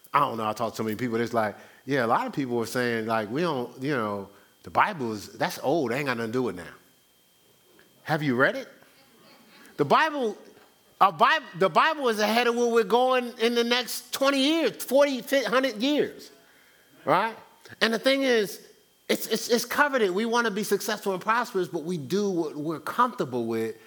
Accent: American